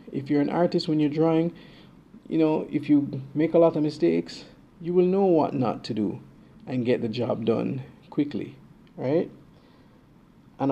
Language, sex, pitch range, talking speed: English, male, 125-160 Hz, 175 wpm